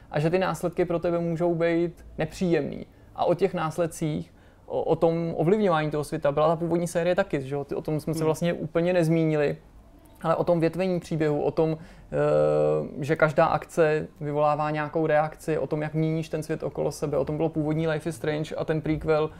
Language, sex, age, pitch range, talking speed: Czech, male, 20-39, 150-170 Hz, 195 wpm